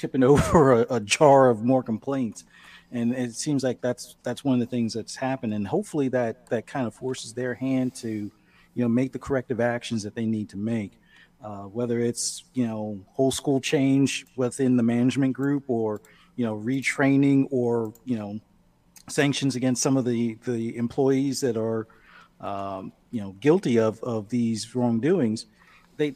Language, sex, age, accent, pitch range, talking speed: English, male, 40-59, American, 115-135 Hz, 180 wpm